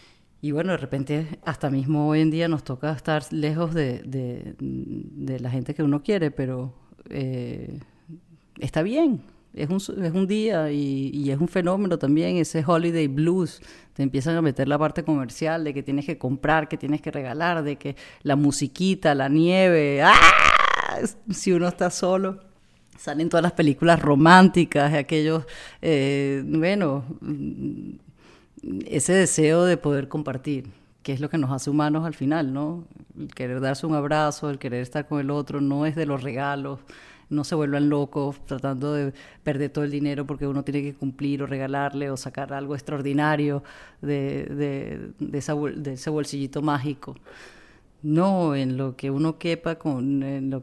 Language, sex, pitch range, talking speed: English, female, 140-160 Hz, 165 wpm